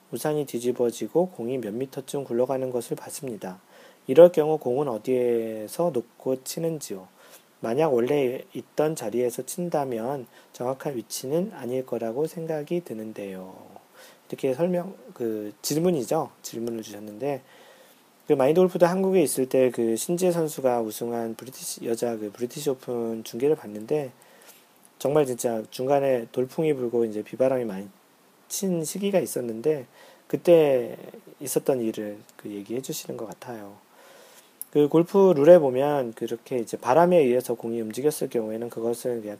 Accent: native